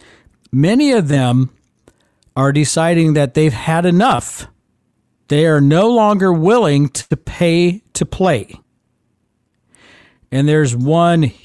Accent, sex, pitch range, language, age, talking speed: American, male, 130-185 Hz, English, 50-69, 110 wpm